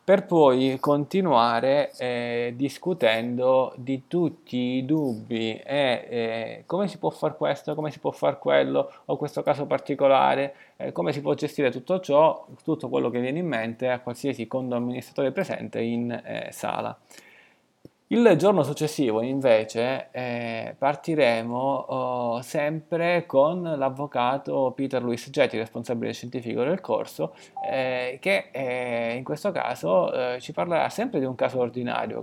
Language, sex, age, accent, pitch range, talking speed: Italian, male, 20-39, native, 120-150 Hz, 140 wpm